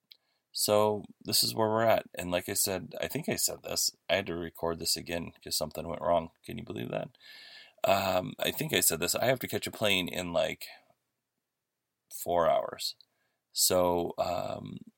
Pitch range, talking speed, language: 90-110 Hz, 190 wpm, English